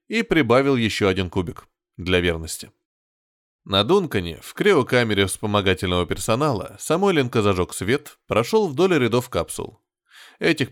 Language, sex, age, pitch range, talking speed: Russian, male, 20-39, 95-150 Hz, 120 wpm